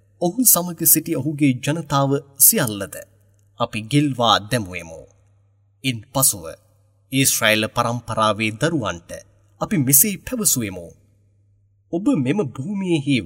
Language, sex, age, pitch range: English, male, 30-49, 100-145 Hz